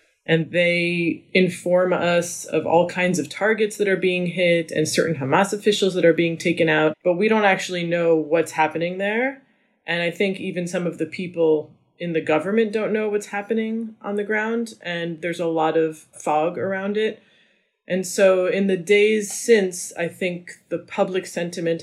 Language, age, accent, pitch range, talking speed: English, 20-39, American, 160-185 Hz, 185 wpm